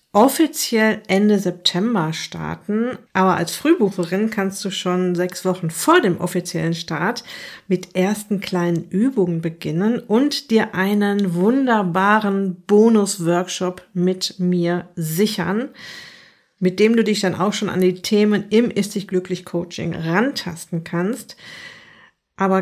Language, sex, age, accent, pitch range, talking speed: German, female, 50-69, German, 185-220 Hz, 115 wpm